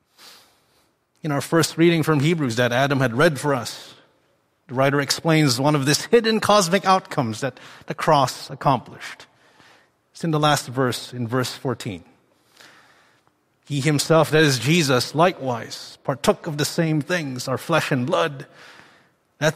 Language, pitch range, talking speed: English, 145-200 Hz, 150 wpm